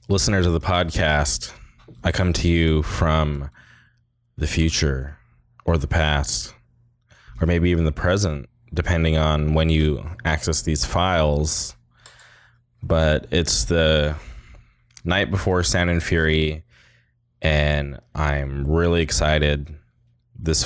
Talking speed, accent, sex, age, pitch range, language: 115 wpm, American, male, 20-39, 75-100 Hz, English